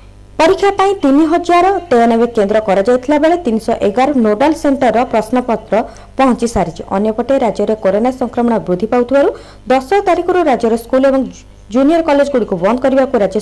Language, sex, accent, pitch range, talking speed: Hindi, female, native, 215-280 Hz, 100 wpm